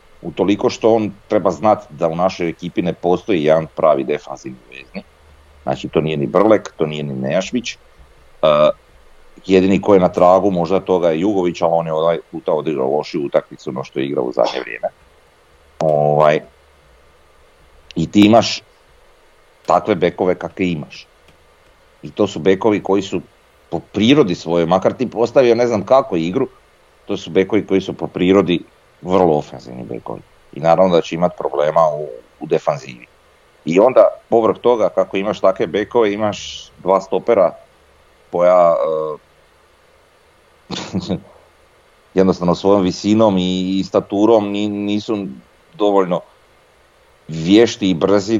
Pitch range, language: 80-100 Hz, Croatian